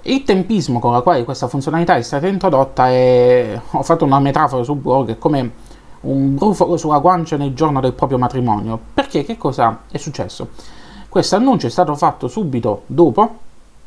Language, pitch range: Italian, 125-175 Hz